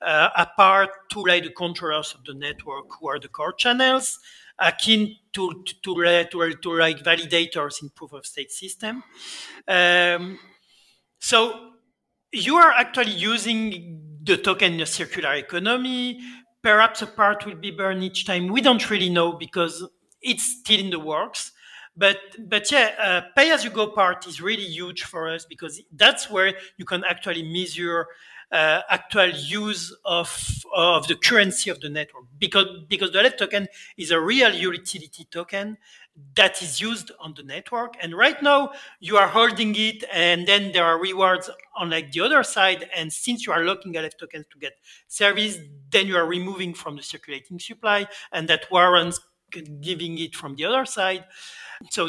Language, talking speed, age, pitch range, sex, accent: English, 165 wpm, 40-59, 170-215 Hz, male, French